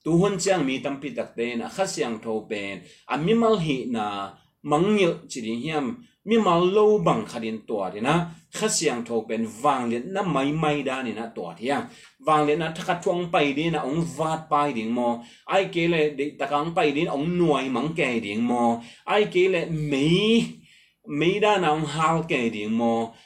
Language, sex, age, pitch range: English, male, 30-49, 120-180 Hz